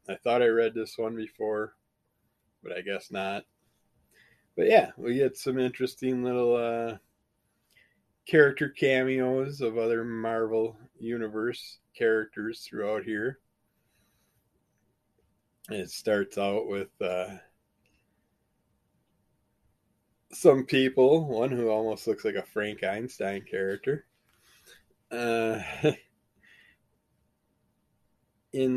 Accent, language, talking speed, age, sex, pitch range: American, English, 95 wpm, 20-39, male, 100-125 Hz